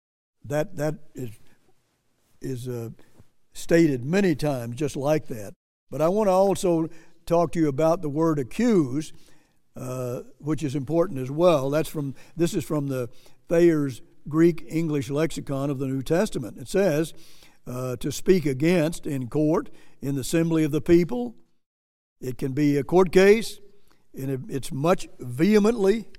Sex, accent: male, American